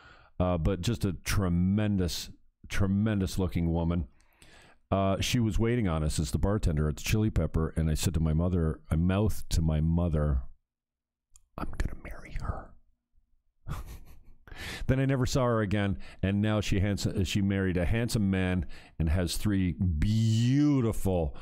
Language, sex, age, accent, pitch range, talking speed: English, male, 50-69, American, 85-115 Hz, 155 wpm